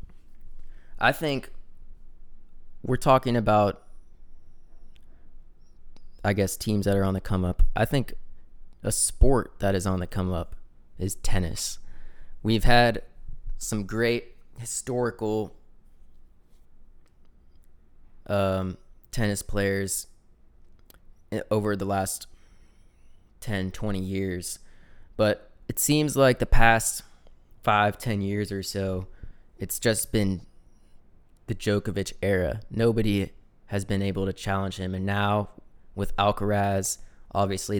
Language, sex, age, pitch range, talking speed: English, male, 20-39, 95-105 Hz, 110 wpm